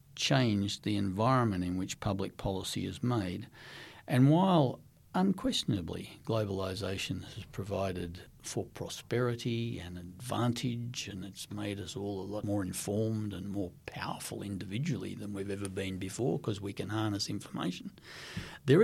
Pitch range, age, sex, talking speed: 100-135 Hz, 60-79, male, 135 wpm